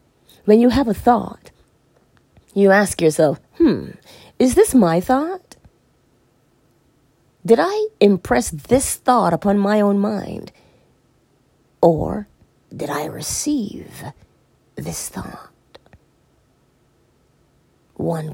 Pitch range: 170-255 Hz